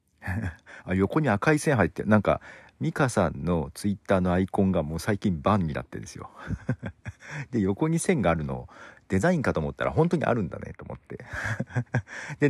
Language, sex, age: Japanese, male, 50-69